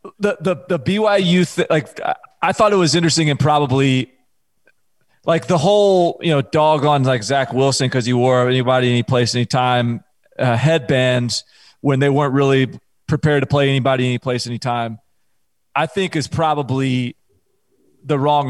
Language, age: English, 30-49